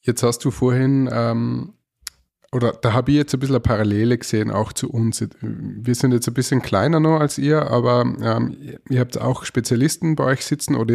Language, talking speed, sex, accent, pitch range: German, 205 wpm, male, Austrian, 110-135 Hz